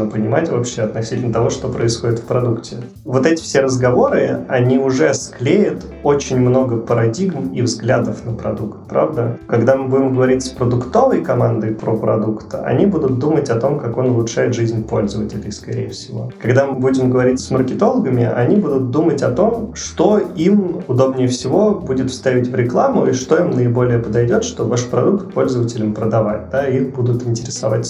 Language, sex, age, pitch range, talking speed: Russian, male, 20-39, 115-130 Hz, 165 wpm